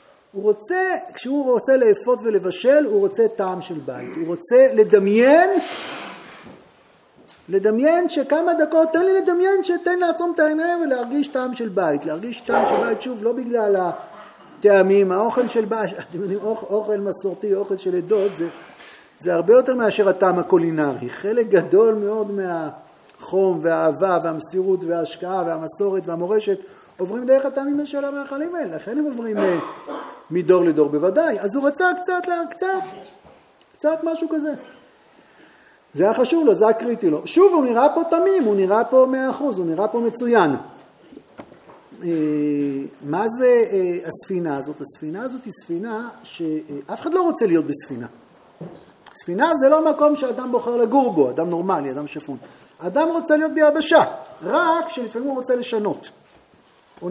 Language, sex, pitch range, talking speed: Hebrew, male, 185-305 Hz, 140 wpm